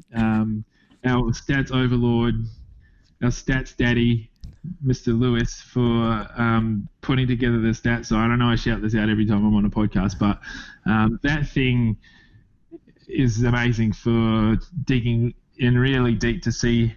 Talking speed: 150 wpm